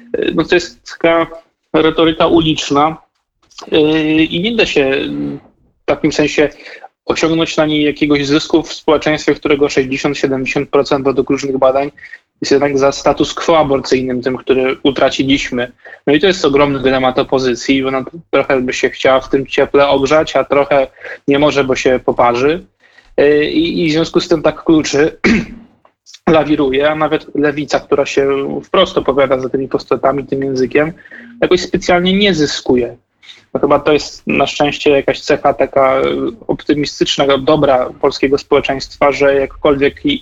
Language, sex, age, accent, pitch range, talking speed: Polish, male, 20-39, native, 135-155 Hz, 150 wpm